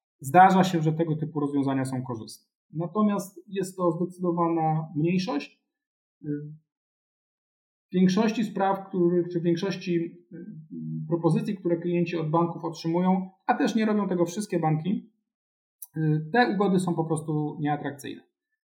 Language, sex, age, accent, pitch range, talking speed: Polish, male, 40-59, native, 145-180 Hz, 120 wpm